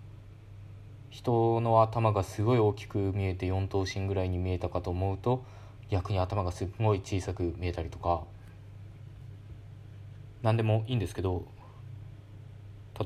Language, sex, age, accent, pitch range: Japanese, male, 20-39, native, 95-110 Hz